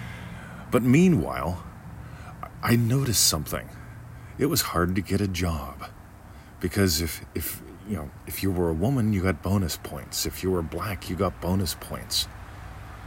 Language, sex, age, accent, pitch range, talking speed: English, male, 40-59, American, 85-105 Hz, 155 wpm